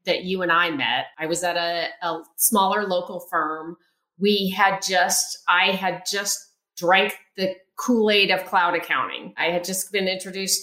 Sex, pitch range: female, 165-195 Hz